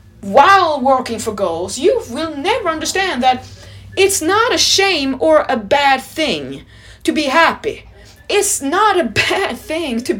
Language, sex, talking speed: English, female, 155 wpm